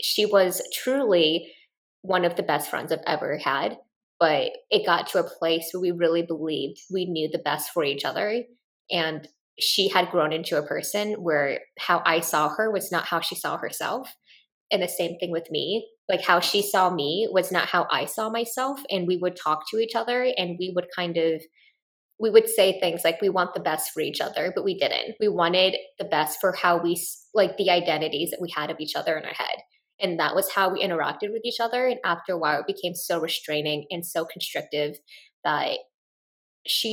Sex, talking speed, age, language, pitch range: female, 215 wpm, 20-39, English, 160-200 Hz